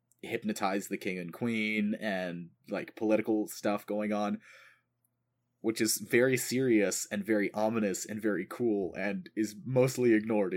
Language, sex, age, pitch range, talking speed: English, male, 30-49, 100-125 Hz, 140 wpm